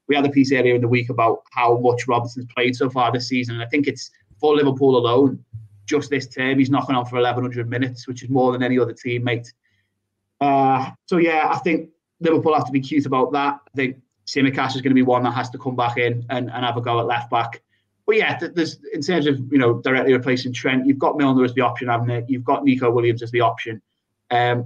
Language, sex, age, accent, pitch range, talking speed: English, male, 20-39, British, 120-140 Hz, 245 wpm